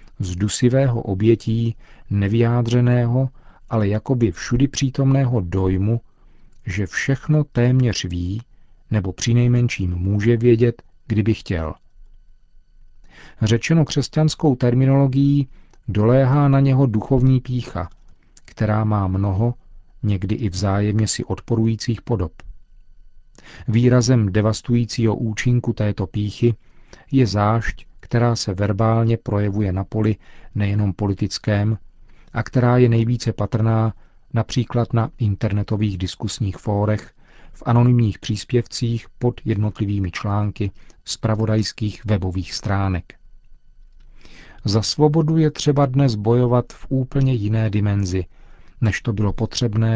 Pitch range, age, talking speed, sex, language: 100-120 Hz, 40-59, 100 wpm, male, Czech